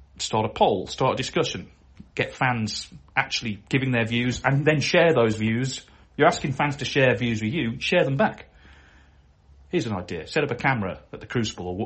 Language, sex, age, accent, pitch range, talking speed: English, male, 40-59, British, 95-140 Hz, 190 wpm